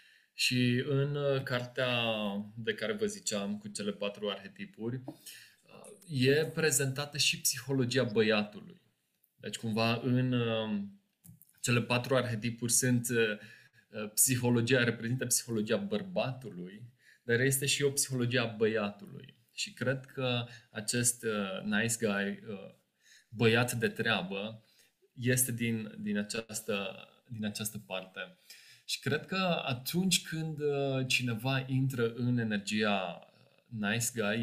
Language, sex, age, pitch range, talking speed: Romanian, male, 20-39, 110-140 Hz, 105 wpm